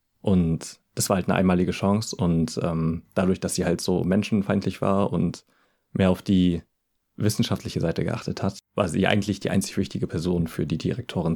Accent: German